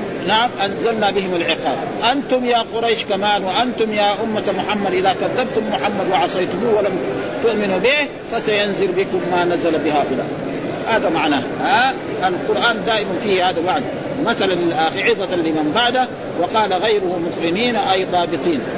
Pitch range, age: 185-245 Hz, 50-69